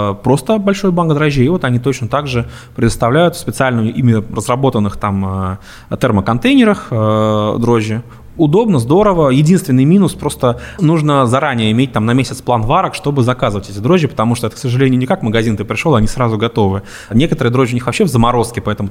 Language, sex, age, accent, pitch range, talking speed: Russian, male, 20-39, native, 105-135 Hz, 170 wpm